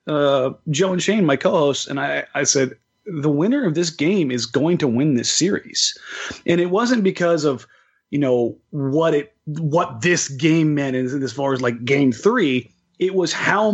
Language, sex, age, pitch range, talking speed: English, male, 30-49, 135-180 Hz, 190 wpm